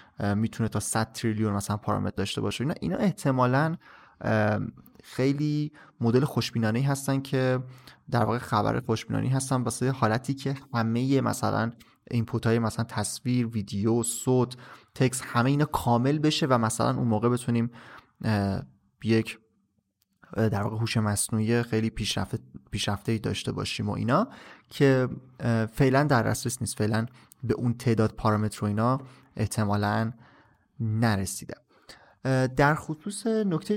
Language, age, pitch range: Persian, 30-49, 110-135 Hz